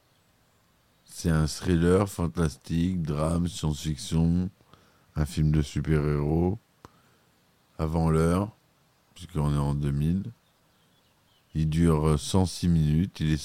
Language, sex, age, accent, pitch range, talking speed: French, male, 50-69, French, 75-90 Hz, 100 wpm